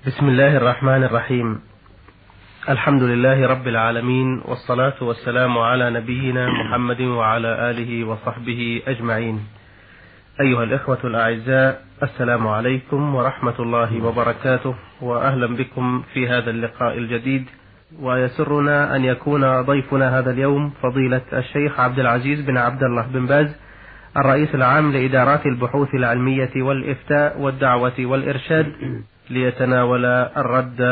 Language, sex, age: Arabic, male, 30-49